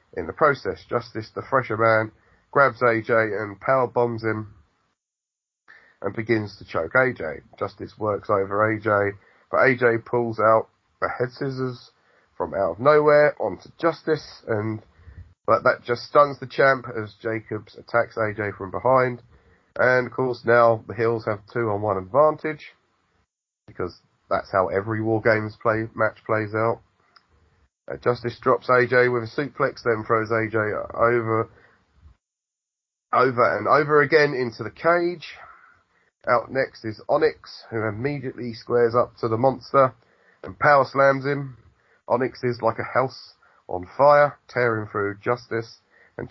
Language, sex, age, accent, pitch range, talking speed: English, male, 30-49, British, 110-130 Hz, 145 wpm